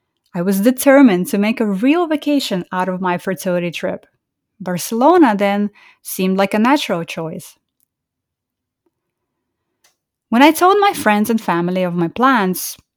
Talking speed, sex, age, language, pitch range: 140 wpm, female, 30-49, English, 185-265 Hz